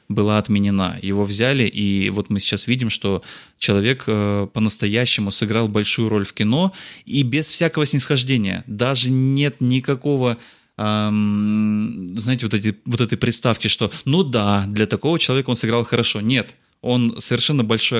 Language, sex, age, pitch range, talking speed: Russian, male, 20-39, 105-130 Hz, 145 wpm